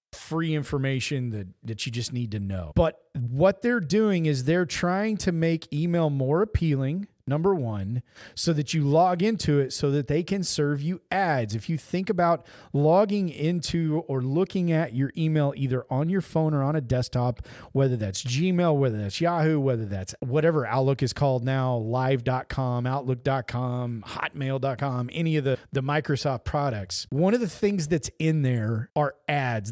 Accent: American